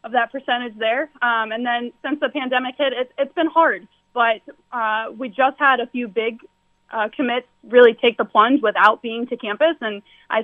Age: 20-39